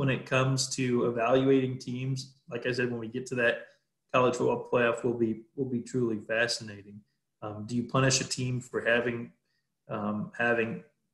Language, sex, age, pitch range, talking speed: English, male, 20-39, 115-135 Hz, 180 wpm